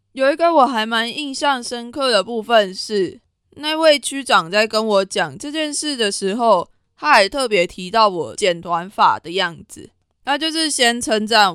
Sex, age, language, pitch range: female, 20-39, Chinese, 190-260 Hz